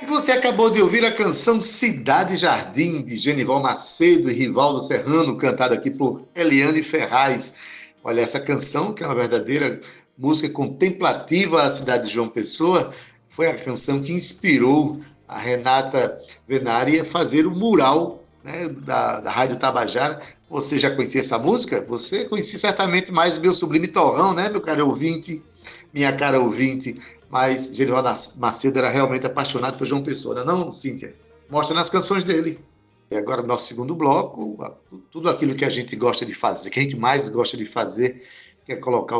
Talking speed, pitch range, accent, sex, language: 170 wpm, 130-175 Hz, Brazilian, male, Portuguese